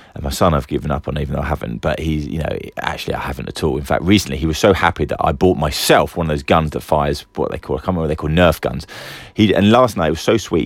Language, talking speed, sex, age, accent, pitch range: English, 310 wpm, male, 30-49, British, 75-95 Hz